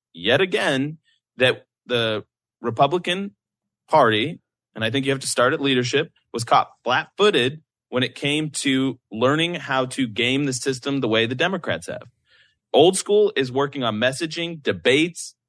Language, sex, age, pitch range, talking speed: English, male, 30-49, 120-150 Hz, 155 wpm